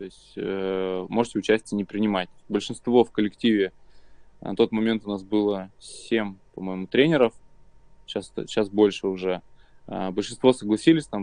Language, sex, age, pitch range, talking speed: Russian, male, 20-39, 100-130 Hz, 135 wpm